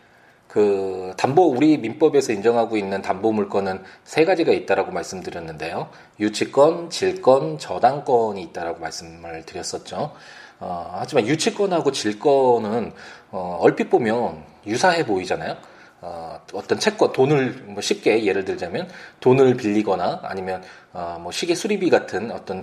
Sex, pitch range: male, 105-175 Hz